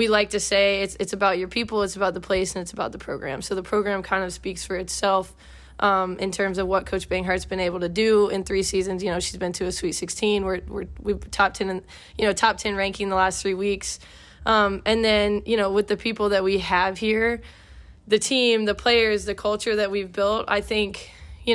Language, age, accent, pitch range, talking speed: English, 20-39, American, 190-210 Hz, 240 wpm